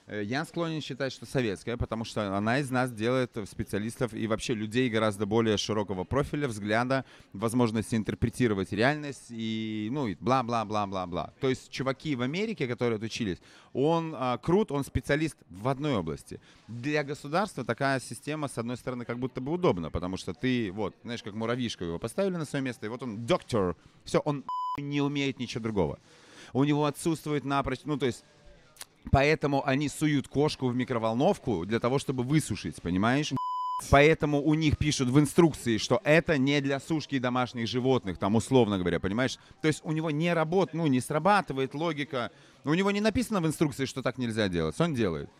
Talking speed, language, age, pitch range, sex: 175 wpm, Russian, 30-49, 115-150 Hz, male